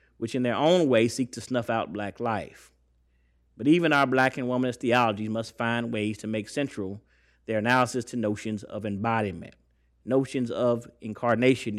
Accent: American